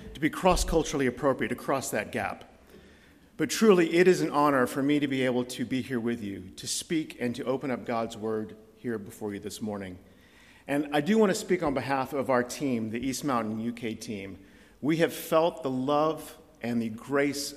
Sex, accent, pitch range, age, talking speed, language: male, American, 120-160 Hz, 50-69, 210 wpm, English